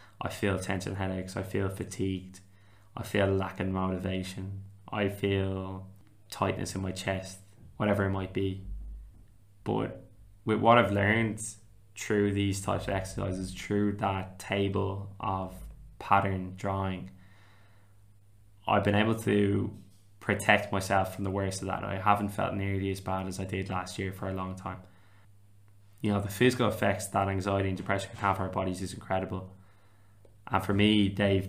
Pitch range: 95-100 Hz